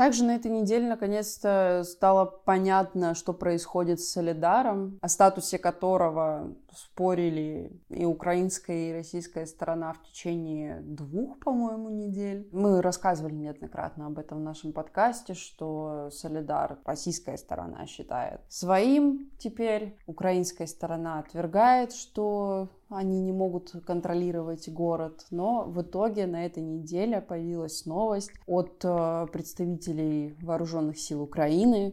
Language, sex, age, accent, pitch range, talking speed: Russian, female, 20-39, native, 165-195 Hz, 115 wpm